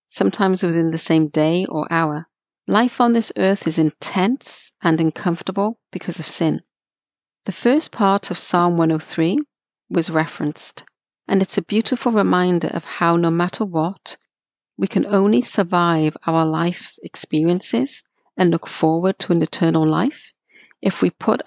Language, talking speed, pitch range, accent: English, 150 wpm, 160-200 Hz, British